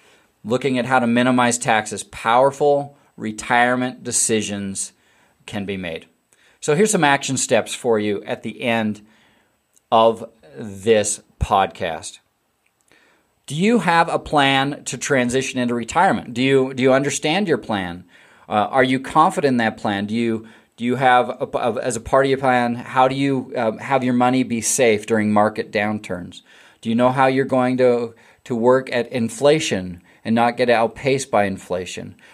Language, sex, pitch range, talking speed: English, male, 110-130 Hz, 165 wpm